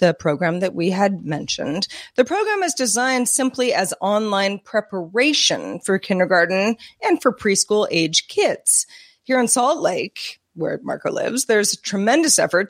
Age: 30-49